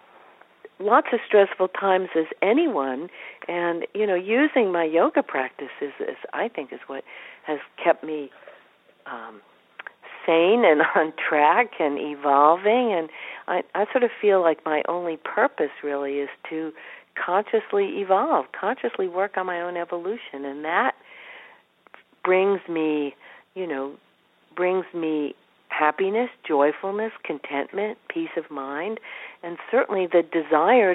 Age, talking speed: 50-69, 130 wpm